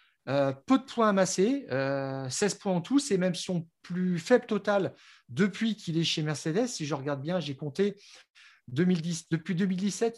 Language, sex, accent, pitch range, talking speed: French, male, French, 150-200 Hz, 175 wpm